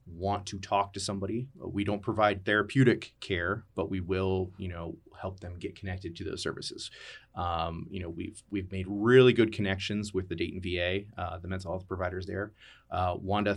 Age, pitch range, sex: 30-49, 95-115 Hz, male